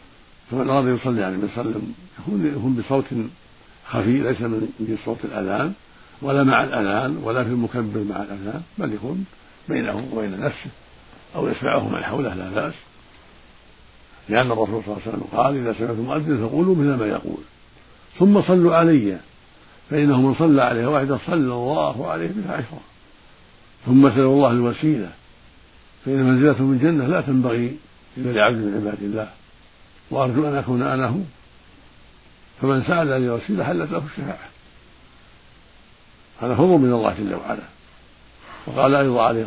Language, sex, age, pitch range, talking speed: Arabic, male, 60-79, 105-135 Hz, 140 wpm